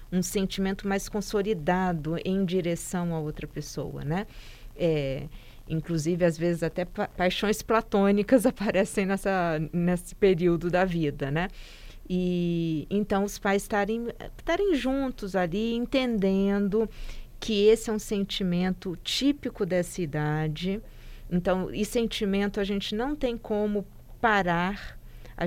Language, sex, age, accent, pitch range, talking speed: Portuguese, female, 50-69, Brazilian, 175-210 Hz, 125 wpm